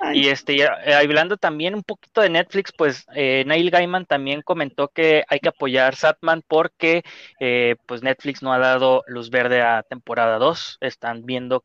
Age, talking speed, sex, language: 20-39, 175 wpm, male, Spanish